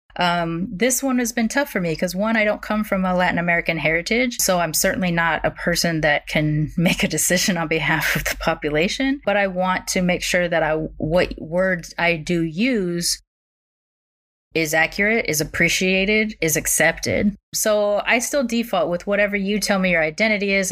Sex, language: female, English